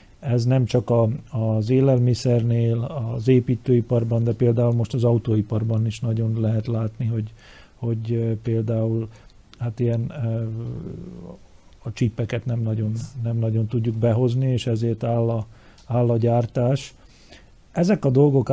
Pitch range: 115-125 Hz